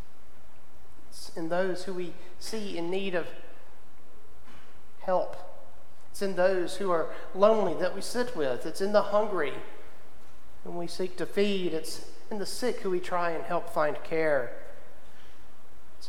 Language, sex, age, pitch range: English, male, 40-59, 165-200 Hz